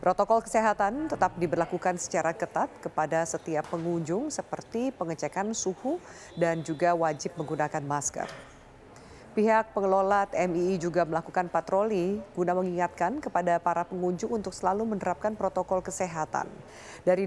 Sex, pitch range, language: female, 170-210 Hz, Indonesian